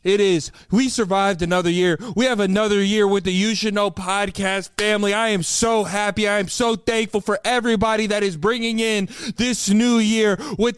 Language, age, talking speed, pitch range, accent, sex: English, 20-39, 195 wpm, 175-215 Hz, American, male